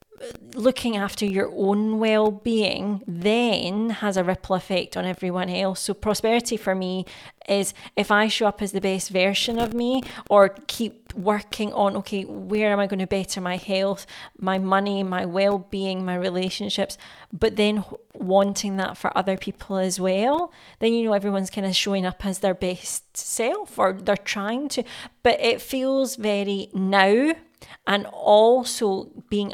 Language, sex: English, female